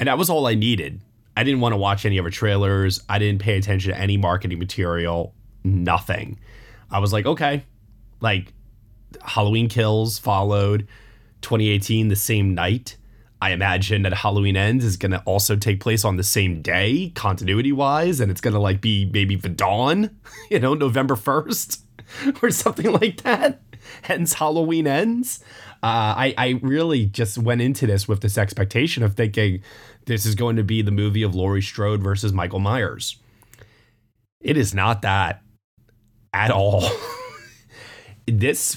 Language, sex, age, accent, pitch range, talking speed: English, male, 20-39, American, 100-125 Hz, 165 wpm